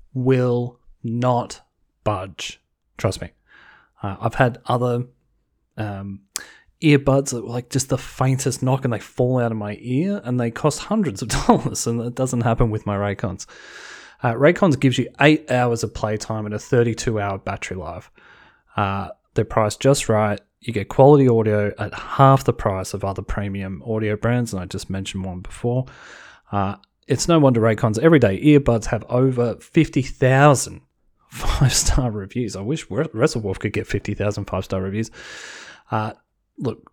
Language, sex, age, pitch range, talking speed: English, male, 30-49, 105-130 Hz, 160 wpm